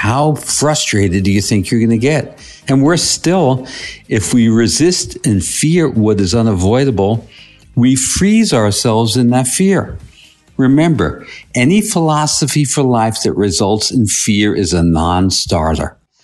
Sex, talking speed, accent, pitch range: male, 140 wpm, American, 90-125 Hz